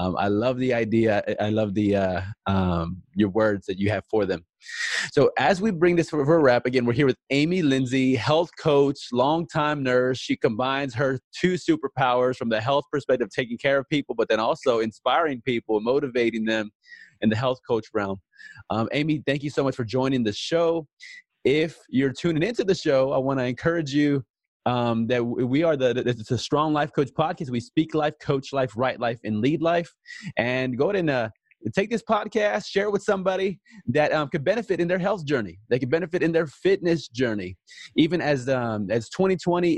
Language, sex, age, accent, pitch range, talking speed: English, male, 30-49, American, 120-165 Hz, 205 wpm